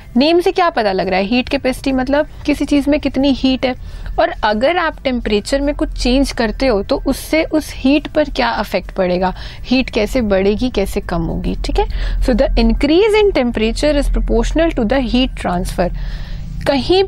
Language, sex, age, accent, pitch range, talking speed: Hindi, female, 30-49, native, 205-275 Hz, 190 wpm